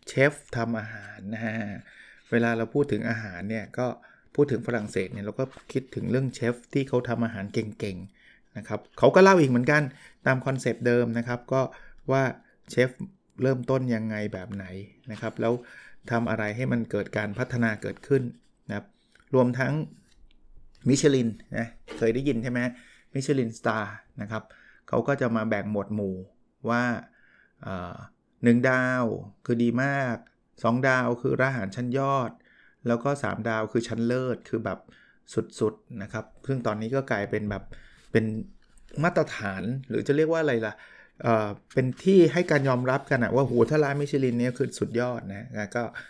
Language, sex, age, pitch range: Thai, male, 20-39, 110-130 Hz